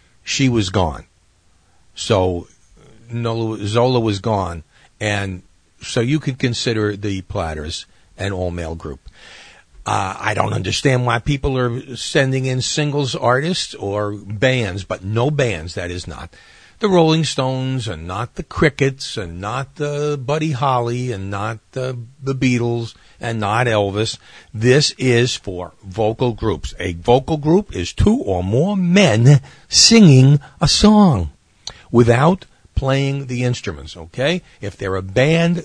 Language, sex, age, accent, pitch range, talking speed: English, male, 50-69, American, 95-135 Hz, 135 wpm